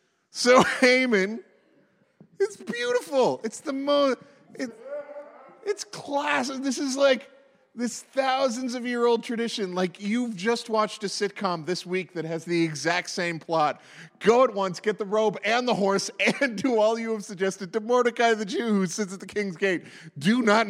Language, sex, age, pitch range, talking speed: English, male, 40-59, 170-225 Hz, 170 wpm